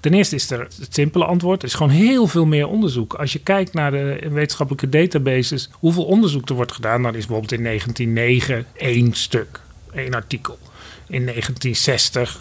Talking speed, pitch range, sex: 180 wpm, 125-175 Hz, male